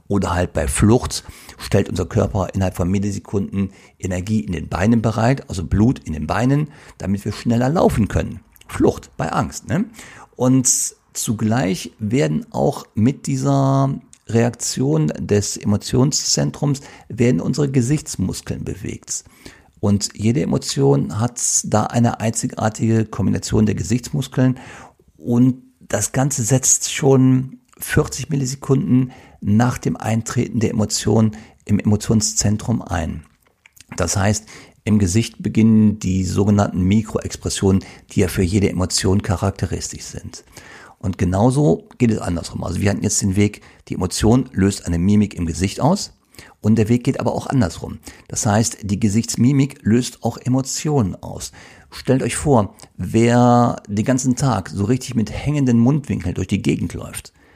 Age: 50-69